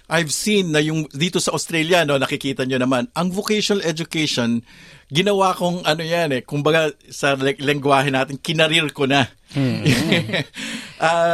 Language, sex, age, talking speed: Filipino, male, 50-69, 145 wpm